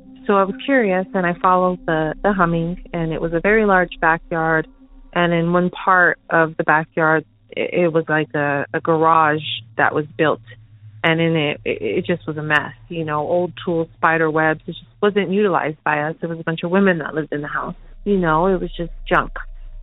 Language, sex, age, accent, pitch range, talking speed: English, female, 30-49, American, 160-190 Hz, 220 wpm